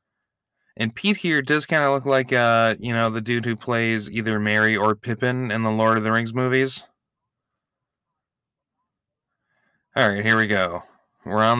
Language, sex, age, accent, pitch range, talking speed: English, male, 20-39, American, 105-125 Hz, 170 wpm